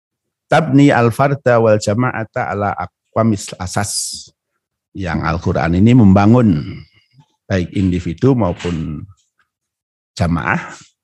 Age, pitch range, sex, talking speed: 50-69, 100-125 Hz, male, 70 wpm